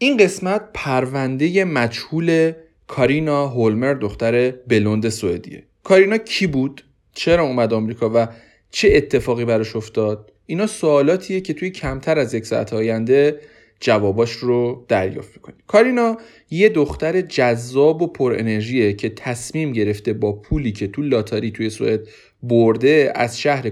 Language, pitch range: Persian, 115-160 Hz